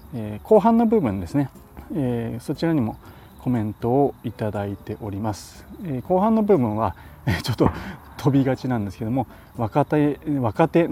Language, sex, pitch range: Japanese, male, 100-135 Hz